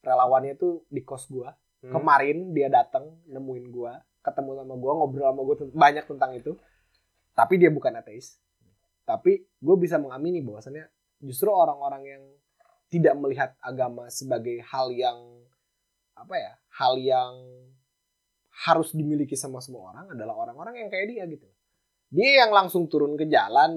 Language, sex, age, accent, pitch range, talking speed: Indonesian, male, 20-39, native, 135-220 Hz, 150 wpm